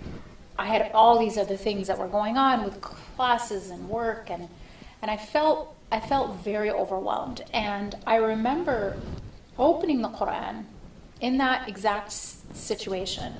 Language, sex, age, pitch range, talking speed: English, female, 30-49, 195-235 Hz, 145 wpm